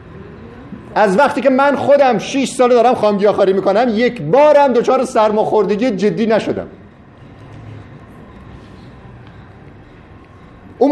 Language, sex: Persian, male